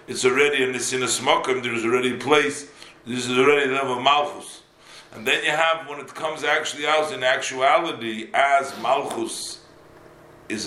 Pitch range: 120-155 Hz